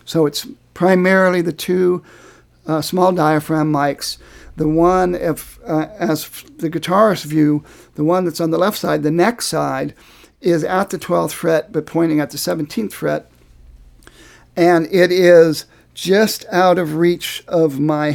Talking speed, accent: 155 wpm, American